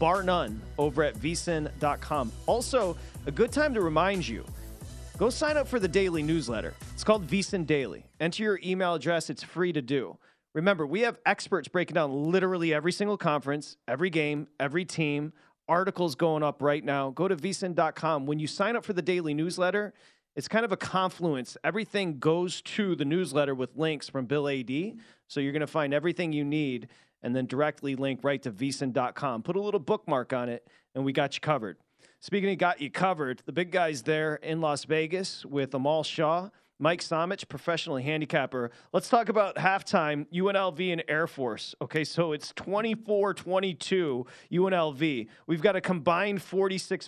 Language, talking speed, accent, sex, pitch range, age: English, 175 wpm, American, male, 150-185 Hz, 30-49